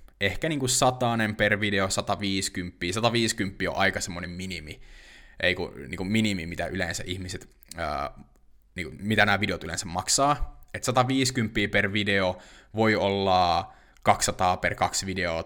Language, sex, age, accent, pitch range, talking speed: Finnish, male, 20-39, native, 90-110 Hz, 135 wpm